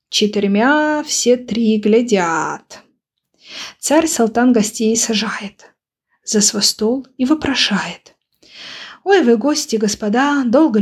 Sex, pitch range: female, 225-270 Hz